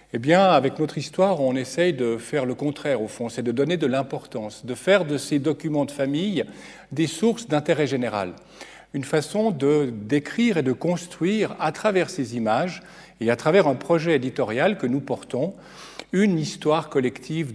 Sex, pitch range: male, 135-180 Hz